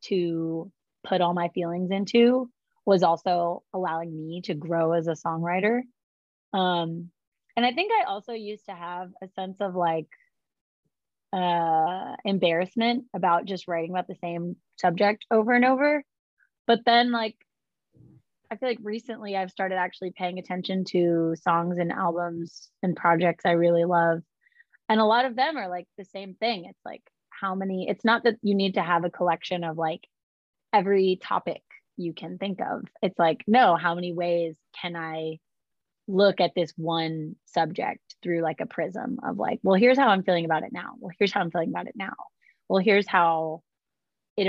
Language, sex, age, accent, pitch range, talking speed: English, female, 20-39, American, 170-205 Hz, 175 wpm